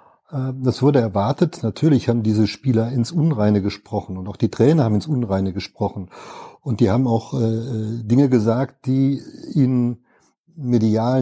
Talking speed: 150 wpm